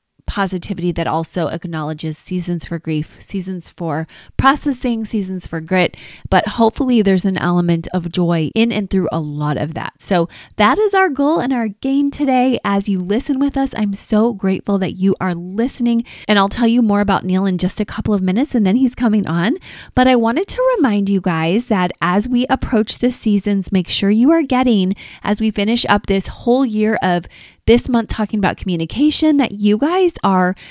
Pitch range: 190-245 Hz